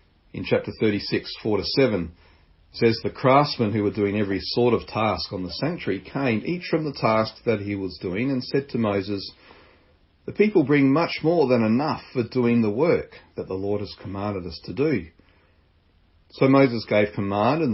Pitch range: 95-125 Hz